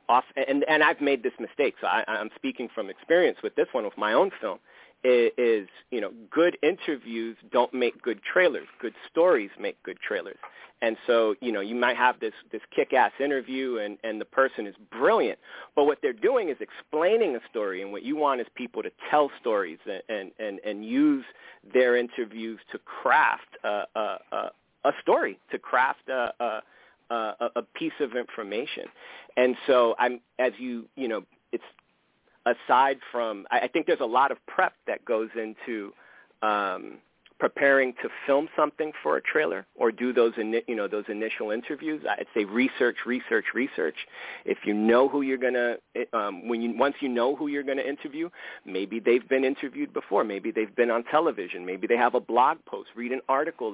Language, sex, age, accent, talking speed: English, male, 40-59, American, 185 wpm